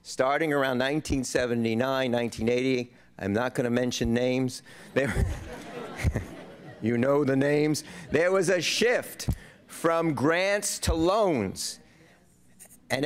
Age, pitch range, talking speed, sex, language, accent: 50-69, 135-175 Hz, 105 wpm, male, English, American